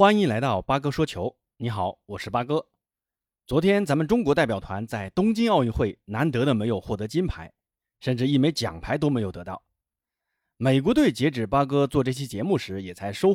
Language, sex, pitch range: Chinese, male, 110-140 Hz